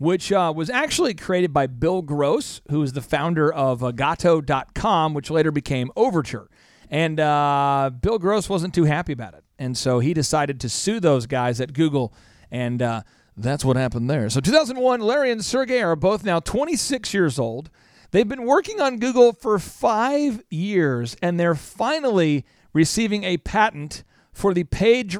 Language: English